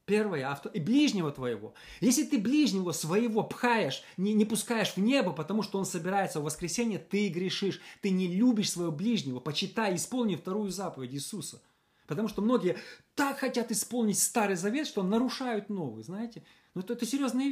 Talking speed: 165 wpm